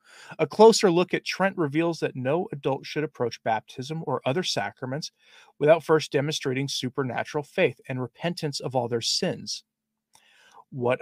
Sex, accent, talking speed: male, American, 145 wpm